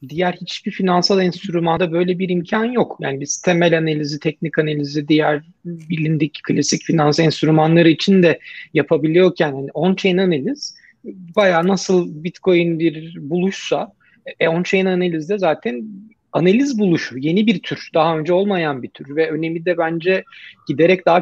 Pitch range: 155-185 Hz